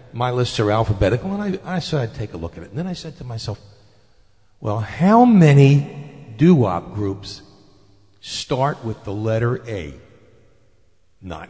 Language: English